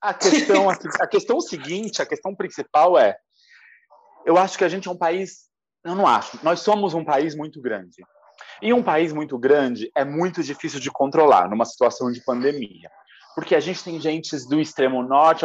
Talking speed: 185 wpm